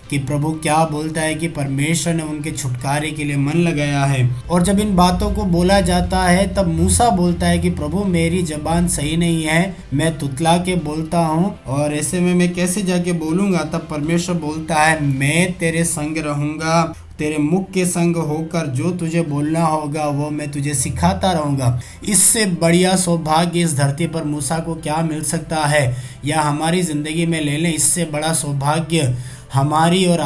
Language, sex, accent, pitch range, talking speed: Hindi, male, native, 150-170 Hz, 180 wpm